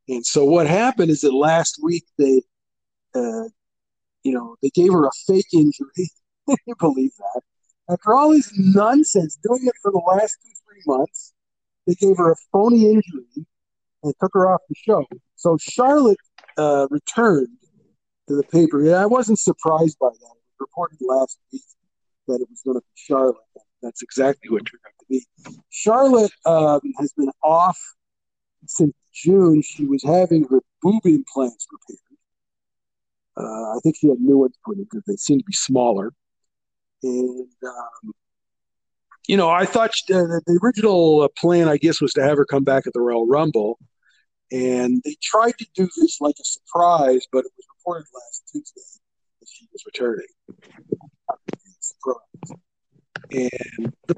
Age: 50-69